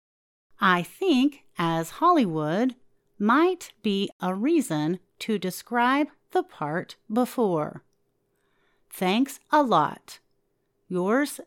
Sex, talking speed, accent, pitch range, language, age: female, 90 wpm, American, 180-285 Hz, English, 40-59